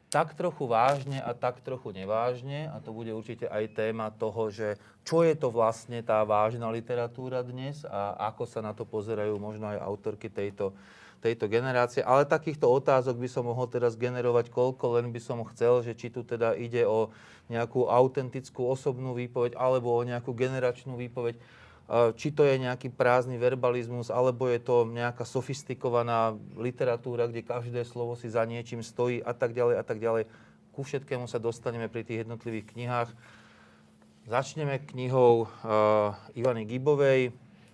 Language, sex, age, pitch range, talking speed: Slovak, male, 30-49, 110-125 Hz, 160 wpm